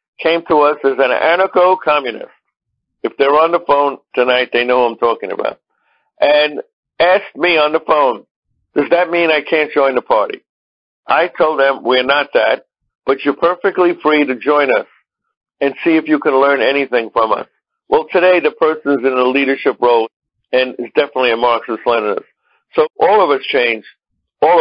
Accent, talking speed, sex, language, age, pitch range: American, 180 wpm, male, English, 60-79, 135-175 Hz